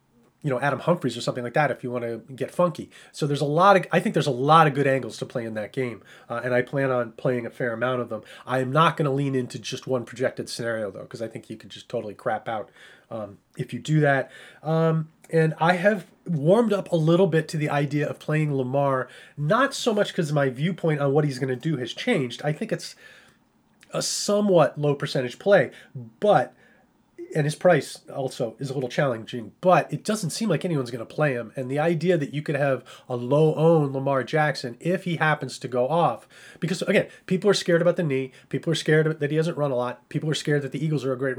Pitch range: 130-175 Hz